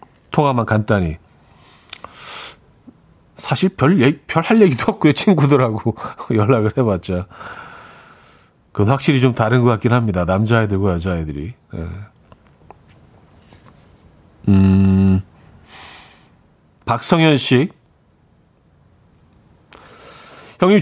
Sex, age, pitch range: male, 40-59, 110-170 Hz